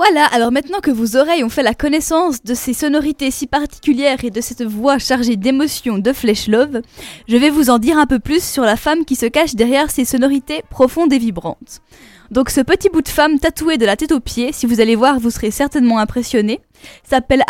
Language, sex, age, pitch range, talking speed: French, female, 10-29, 235-300 Hz, 225 wpm